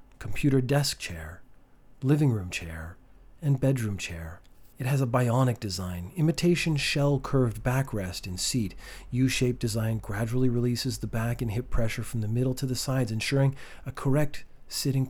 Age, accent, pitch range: 40-59, American, 110-135 Hz